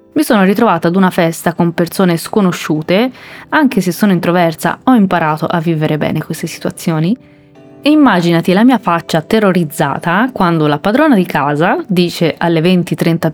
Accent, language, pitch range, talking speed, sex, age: native, Italian, 160-195 Hz, 155 wpm, female, 20-39